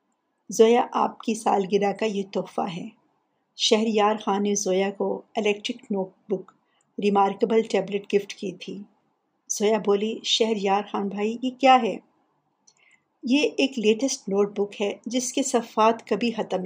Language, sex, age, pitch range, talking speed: Urdu, female, 50-69, 200-240 Hz, 145 wpm